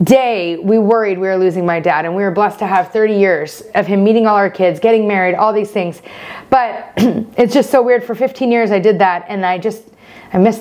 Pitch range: 200-260 Hz